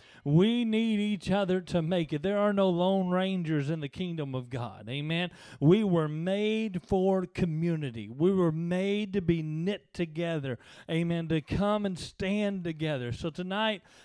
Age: 40-59